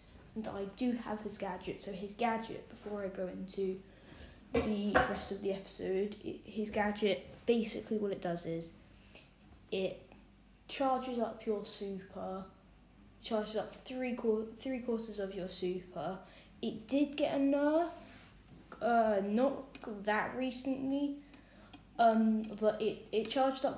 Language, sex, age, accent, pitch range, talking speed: English, female, 10-29, British, 195-235 Hz, 140 wpm